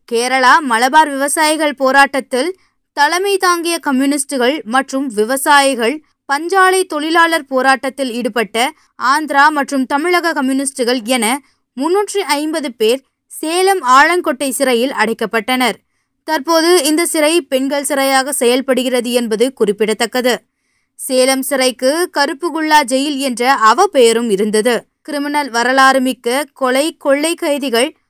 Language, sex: Tamil, female